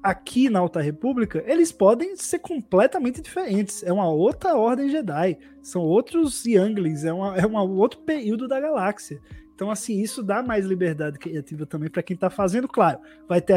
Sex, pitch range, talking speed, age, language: male, 170-225 Hz, 175 wpm, 20-39, Portuguese